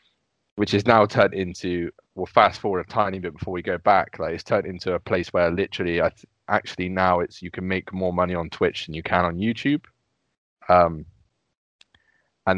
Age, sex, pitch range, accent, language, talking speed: 20-39, male, 85-100 Hz, British, English, 200 wpm